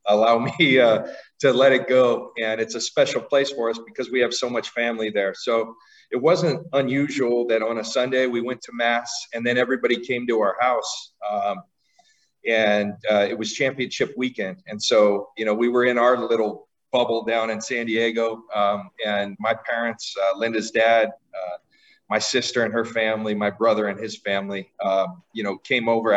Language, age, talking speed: English, 40-59, 195 wpm